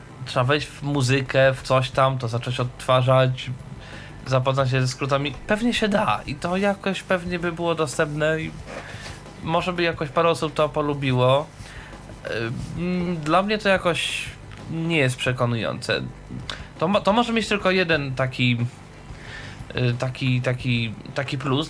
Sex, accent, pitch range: male, native, 125-165 Hz